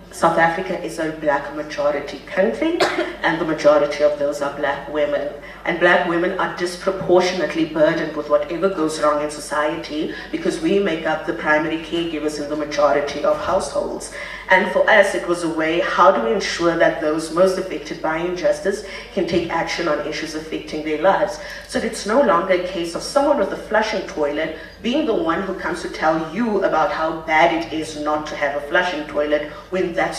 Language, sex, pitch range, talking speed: English, female, 155-200 Hz, 190 wpm